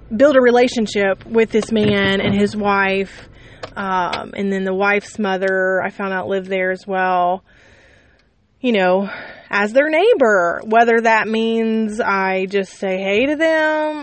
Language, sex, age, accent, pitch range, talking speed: English, female, 20-39, American, 190-230 Hz, 155 wpm